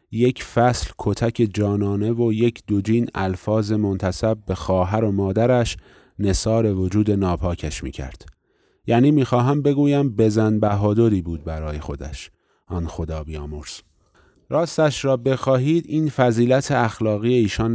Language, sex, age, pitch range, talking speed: Persian, male, 30-49, 95-115 Hz, 120 wpm